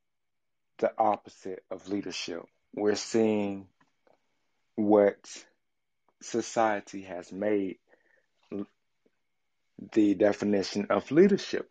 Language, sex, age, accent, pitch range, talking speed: English, male, 30-49, American, 100-125 Hz, 70 wpm